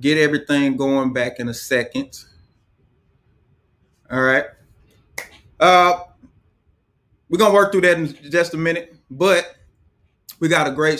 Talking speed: 135 wpm